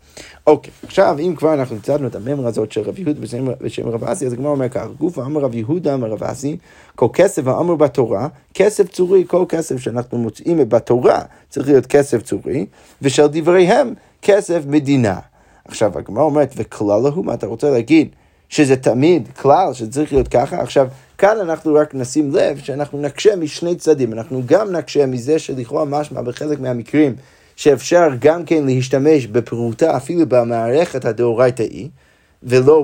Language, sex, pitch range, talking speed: Hebrew, male, 125-155 Hz, 175 wpm